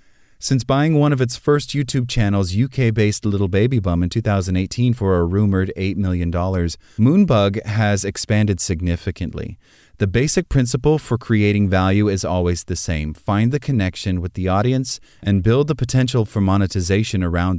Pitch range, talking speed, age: 85-110 Hz, 155 wpm, 30-49